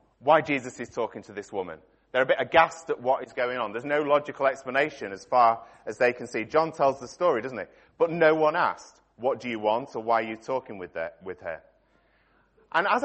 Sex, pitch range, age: male, 125-165 Hz, 30-49